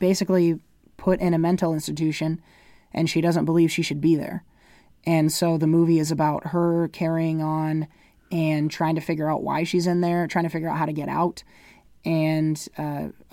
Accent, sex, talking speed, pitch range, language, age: American, male, 190 wpm, 165-195 Hz, English, 20-39